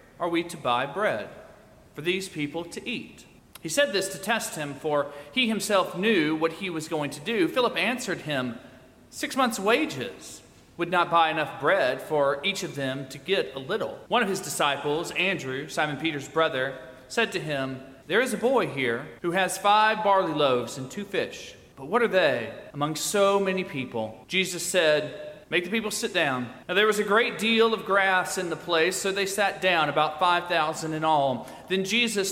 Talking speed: 195 wpm